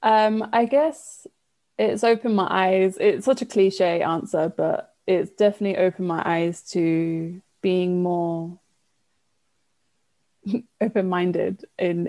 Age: 20-39